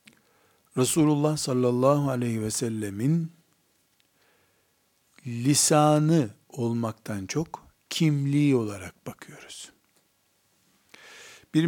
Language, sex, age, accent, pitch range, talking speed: Turkish, male, 60-79, native, 125-165 Hz, 60 wpm